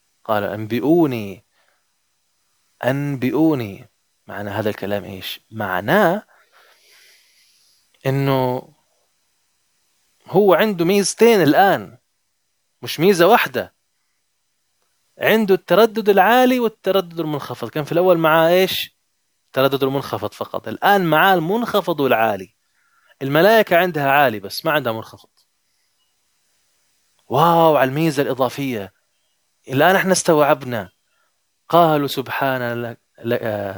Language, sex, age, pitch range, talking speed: Arabic, male, 20-39, 110-170 Hz, 85 wpm